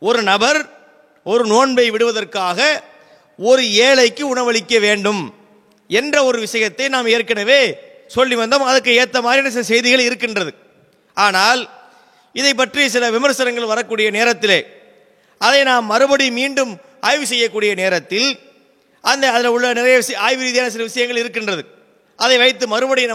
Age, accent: 30-49, Indian